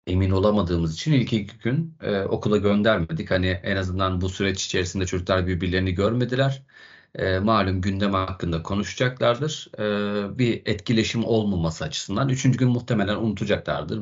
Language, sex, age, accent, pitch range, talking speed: Turkish, male, 40-59, native, 90-110 Hz, 135 wpm